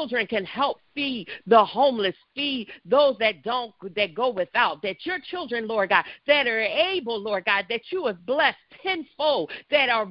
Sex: female